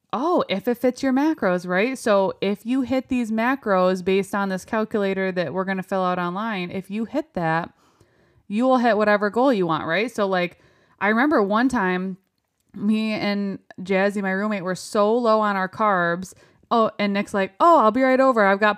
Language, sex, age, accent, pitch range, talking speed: English, female, 20-39, American, 180-225 Hz, 205 wpm